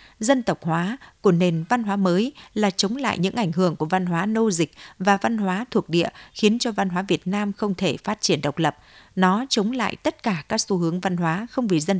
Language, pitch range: Vietnamese, 170-220 Hz